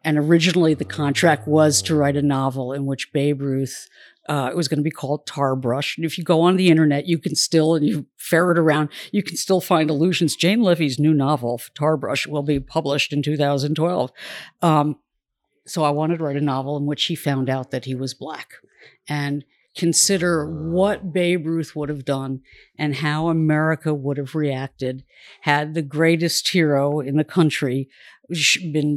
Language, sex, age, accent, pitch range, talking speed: English, female, 50-69, American, 140-165 Hz, 185 wpm